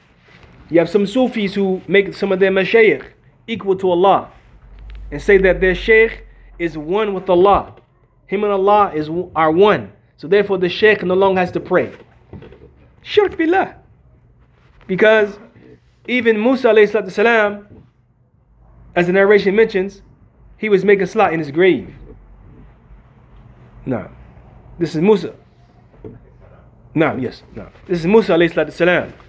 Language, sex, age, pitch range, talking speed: English, male, 30-49, 155-210 Hz, 130 wpm